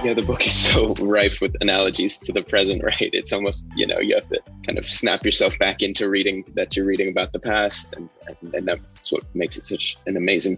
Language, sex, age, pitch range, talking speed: English, male, 20-39, 100-125 Hz, 240 wpm